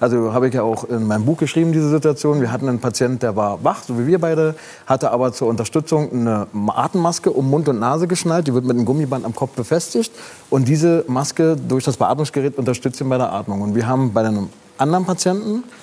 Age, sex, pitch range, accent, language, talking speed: 30-49, male, 125-155 Hz, German, German, 225 wpm